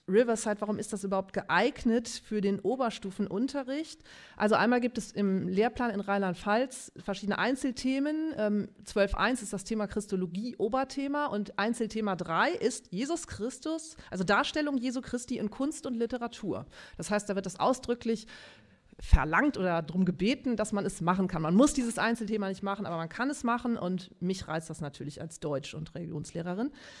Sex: female